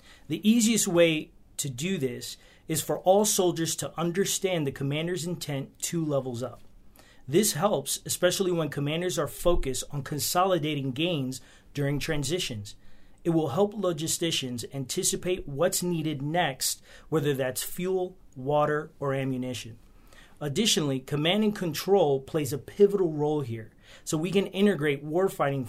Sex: male